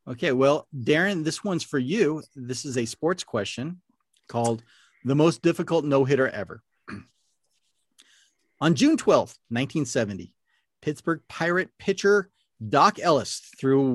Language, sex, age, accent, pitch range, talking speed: English, male, 40-59, American, 125-165 Hz, 120 wpm